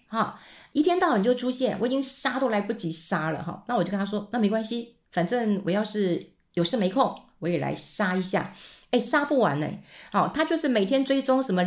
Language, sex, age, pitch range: Chinese, female, 50-69, 175-245 Hz